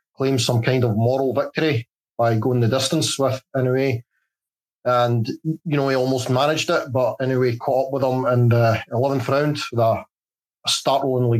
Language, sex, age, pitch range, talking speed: English, male, 30-49, 120-140 Hz, 170 wpm